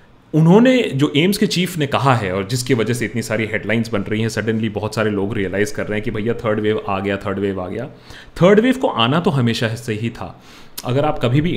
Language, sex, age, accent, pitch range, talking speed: Hindi, male, 30-49, native, 110-170 Hz, 250 wpm